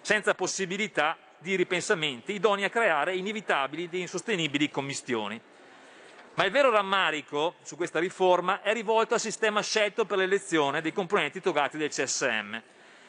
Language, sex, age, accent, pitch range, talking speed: Italian, male, 40-59, native, 155-210 Hz, 140 wpm